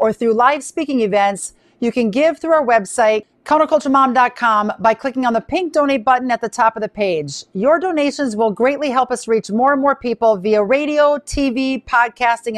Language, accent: English, American